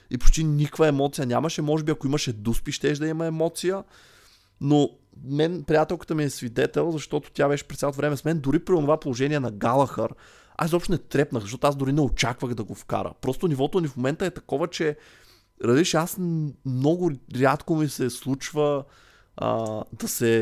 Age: 20-39